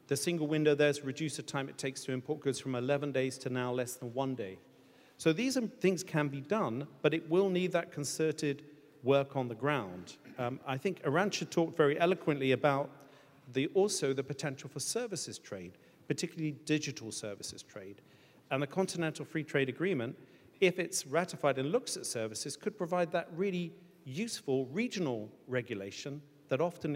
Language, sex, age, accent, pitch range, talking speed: English, male, 40-59, British, 130-165 Hz, 175 wpm